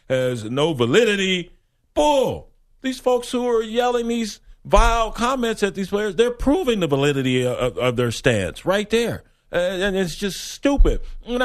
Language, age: English, 40-59